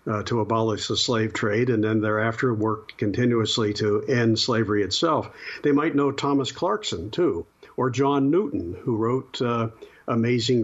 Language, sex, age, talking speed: English, male, 60-79, 160 wpm